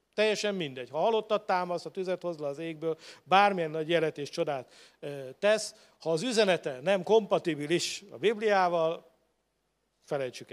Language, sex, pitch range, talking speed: Hungarian, male, 150-185 Hz, 140 wpm